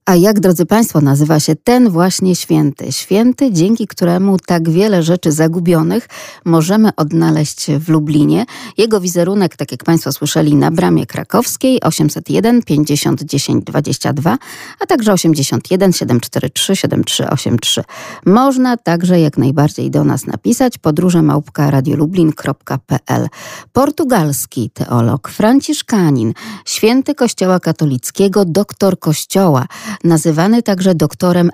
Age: 40-59